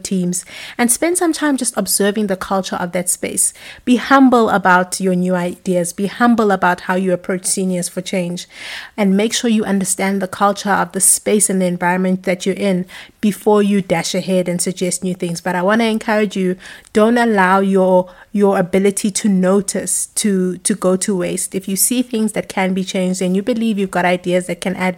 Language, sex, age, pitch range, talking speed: English, female, 30-49, 185-215 Hz, 205 wpm